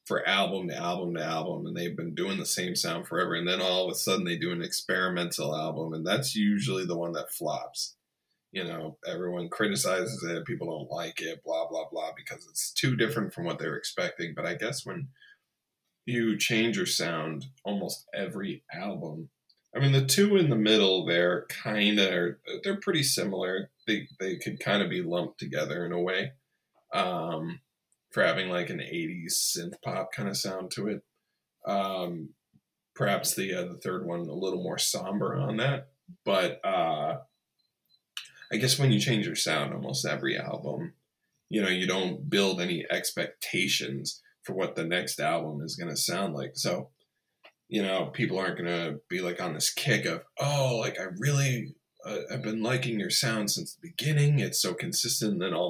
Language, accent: English, American